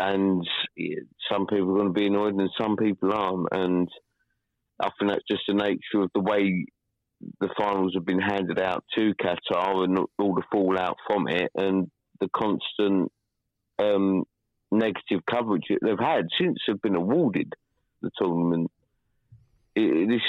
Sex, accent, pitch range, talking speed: male, British, 90-110 Hz, 155 wpm